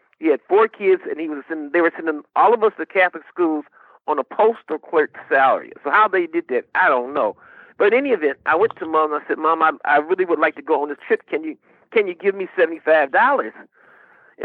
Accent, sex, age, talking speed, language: American, male, 50-69, 245 wpm, English